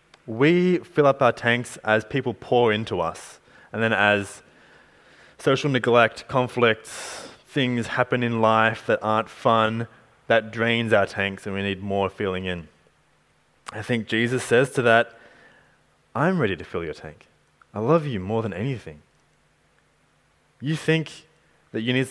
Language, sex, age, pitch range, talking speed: English, male, 20-39, 100-125 Hz, 150 wpm